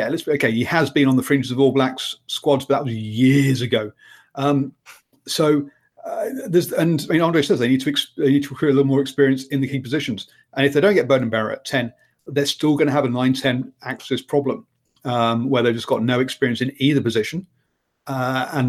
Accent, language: British, English